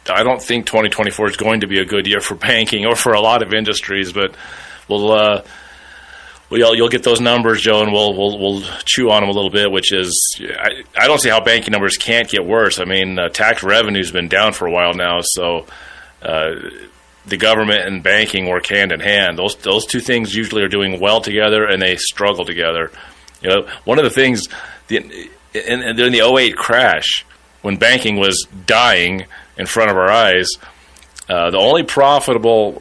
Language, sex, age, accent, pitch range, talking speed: English, male, 30-49, American, 95-110 Hz, 205 wpm